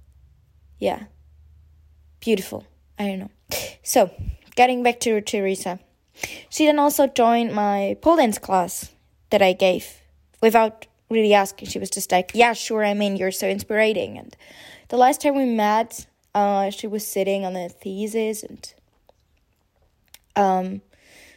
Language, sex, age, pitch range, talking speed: English, female, 20-39, 195-240 Hz, 140 wpm